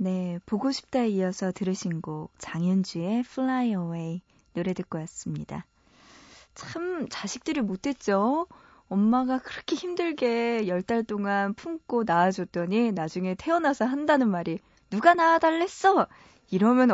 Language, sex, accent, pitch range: Korean, female, native, 185-255 Hz